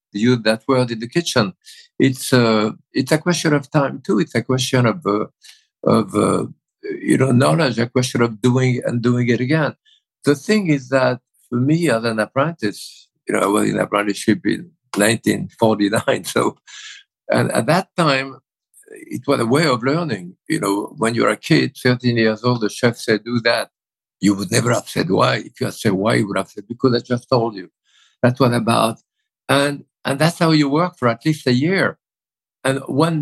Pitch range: 120-150 Hz